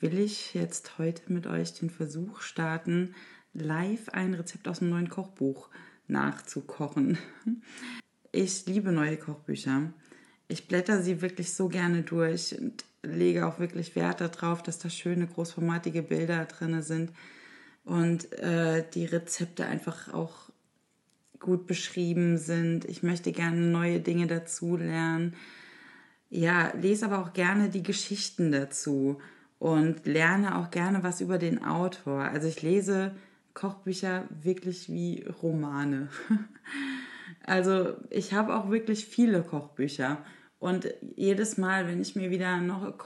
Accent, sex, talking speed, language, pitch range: German, female, 130 wpm, German, 165-190 Hz